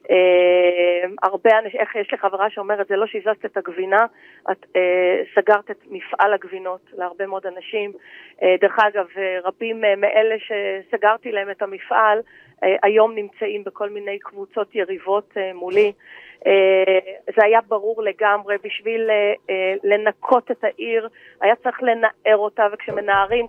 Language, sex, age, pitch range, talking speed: Hebrew, female, 30-49, 195-230 Hz, 150 wpm